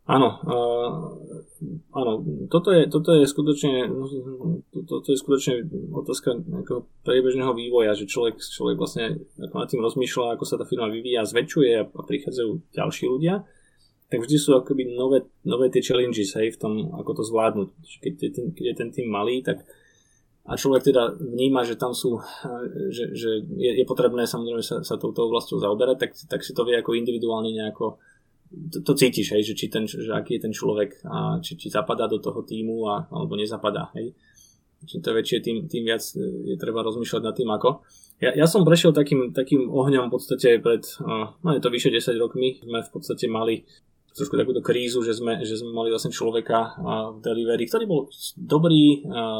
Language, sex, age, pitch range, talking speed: Slovak, male, 20-39, 115-145 Hz, 185 wpm